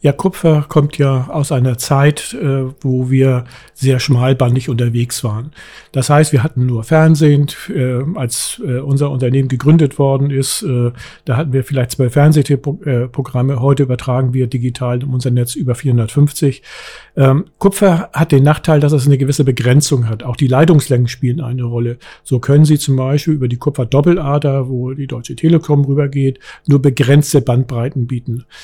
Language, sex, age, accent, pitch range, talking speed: German, male, 50-69, German, 125-150 Hz, 155 wpm